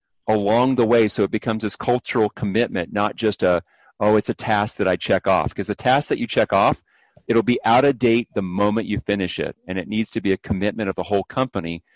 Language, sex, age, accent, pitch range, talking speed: English, male, 40-59, American, 105-125 Hz, 240 wpm